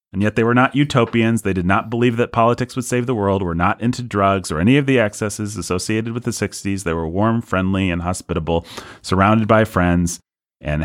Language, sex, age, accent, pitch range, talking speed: English, male, 30-49, American, 90-115 Hz, 215 wpm